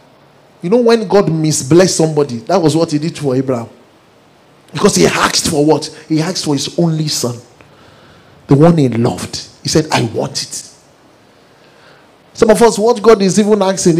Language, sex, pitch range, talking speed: English, male, 150-200 Hz, 175 wpm